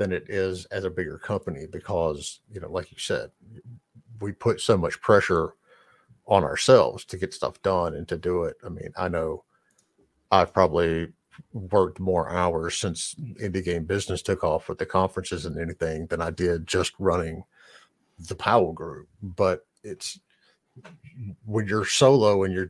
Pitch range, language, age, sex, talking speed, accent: 90-110 Hz, English, 50-69, male, 165 wpm, American